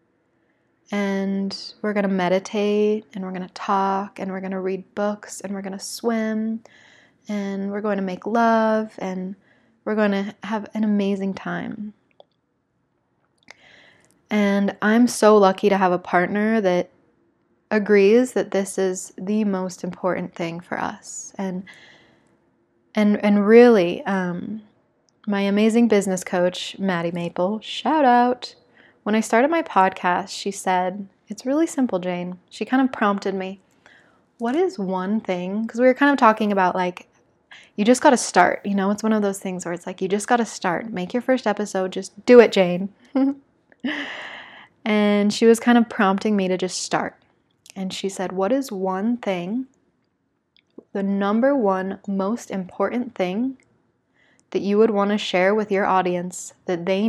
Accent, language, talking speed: American, English, 165 wpm